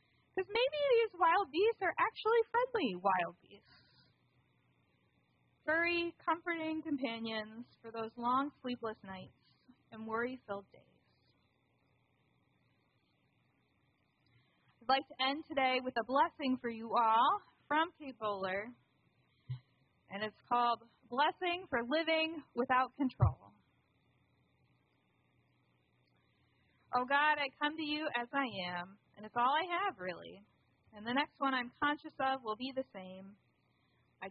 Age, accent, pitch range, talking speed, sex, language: 30-49, American, 225-290 Hz, 120 wpm, female, English